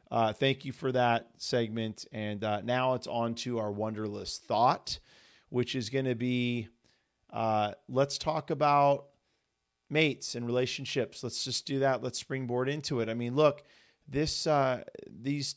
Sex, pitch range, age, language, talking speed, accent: male, 105-130 Hz, 40-59, English, 160 wpm, American